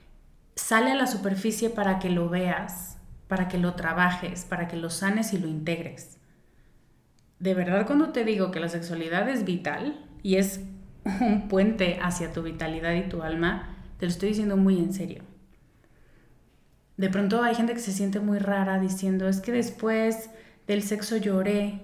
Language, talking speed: Spanish, 170 wpm